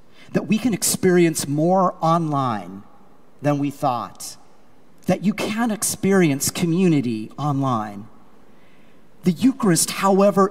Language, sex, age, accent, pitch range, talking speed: English, male, 40-59, American, 145-195 Hz, 105 wpm